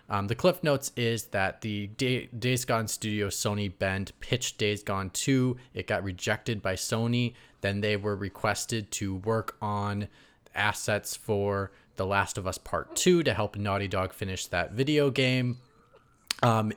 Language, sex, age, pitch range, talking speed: English, male, 20-39, 105-125 Hz, 160 wpm